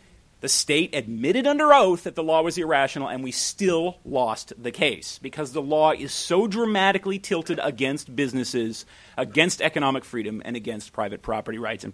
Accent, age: American, 40-59